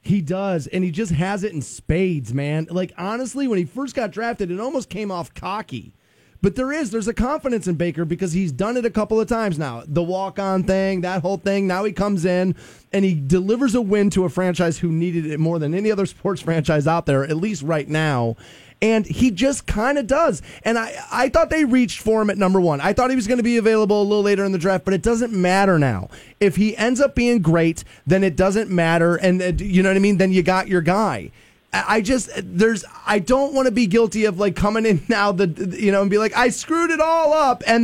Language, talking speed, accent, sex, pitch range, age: English, 245 wpm, American, male, 180-230 Hz, 30-49